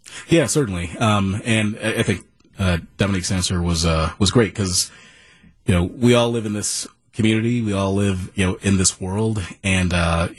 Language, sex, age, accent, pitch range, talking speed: English, male, 30-49, American, 95-110 Hz, 185 wpm